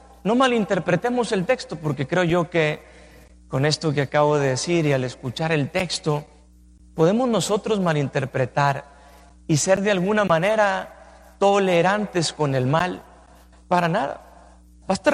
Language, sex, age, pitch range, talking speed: Spanish, male, 40-59, 150-205 Hz, 135 wpm